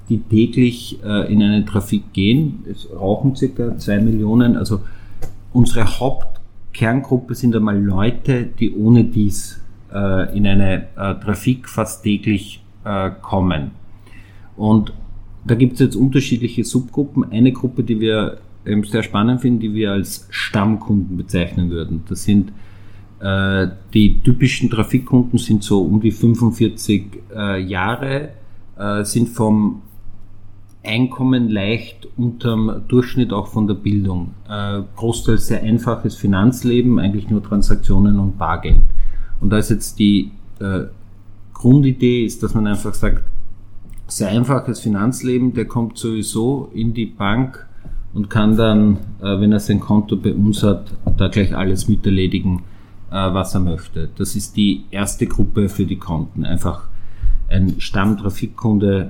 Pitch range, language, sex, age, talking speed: 100-115 Hz, German, male, 50-69, 140 wpm